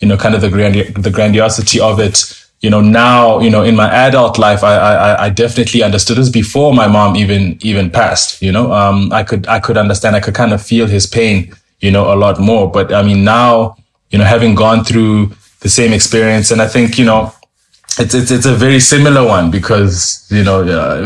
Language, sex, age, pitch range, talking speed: English, male, 20-39, 100-120 Hz, 225 wpm